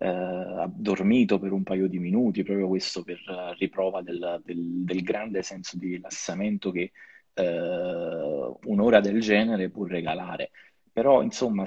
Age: 30-49